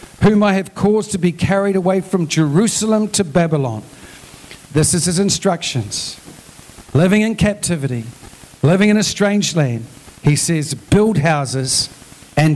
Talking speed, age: 140 wpm, 50-69